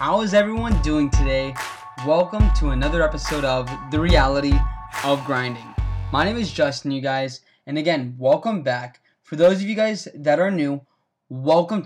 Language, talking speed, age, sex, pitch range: English, 165 wpm, 20-39, male, 135-175 Hz